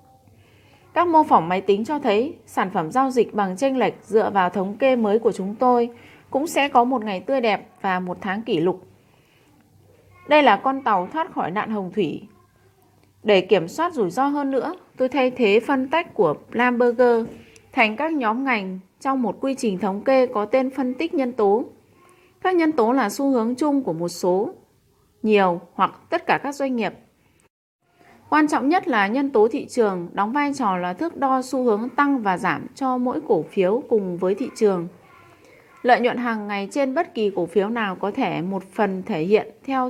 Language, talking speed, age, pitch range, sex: Vietnamese, 200 wpm, 20-39, 195-270 Hz, female